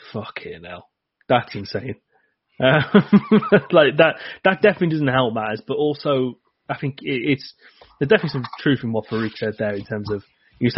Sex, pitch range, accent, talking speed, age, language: male, 110-125 Hz, British, 185 wpm, 20-39, English